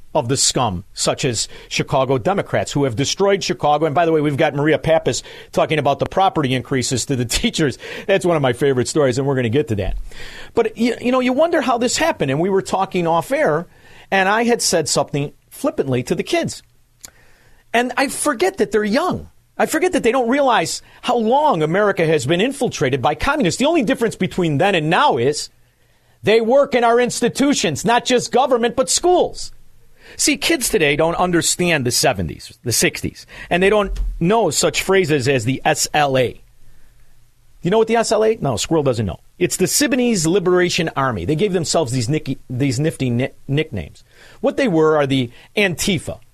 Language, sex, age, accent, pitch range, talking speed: English, male, 50-69, American, 140-225 Hz, 190 wpm